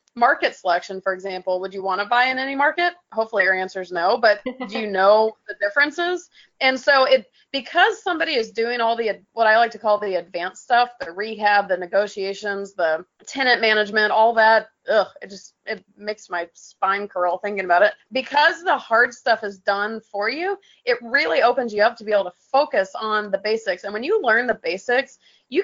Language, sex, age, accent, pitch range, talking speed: English, female, 30-49, American, 200-255 Hz, 205 wpm